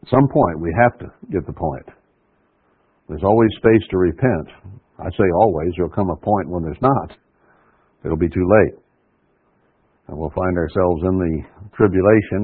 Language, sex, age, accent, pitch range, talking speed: English, male, 60-79, American, 90-120 Hz, 170 wpm